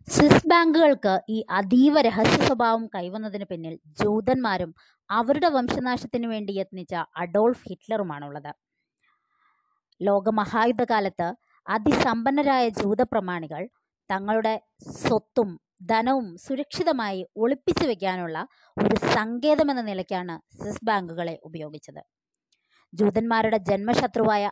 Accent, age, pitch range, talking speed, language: native, 20-39, 185-255 Hz, 80 wpm, Malayalam